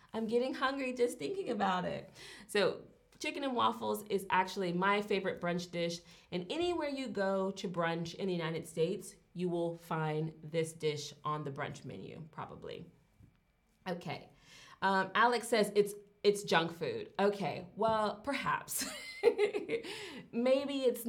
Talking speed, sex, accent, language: 140 wpm, female, American, English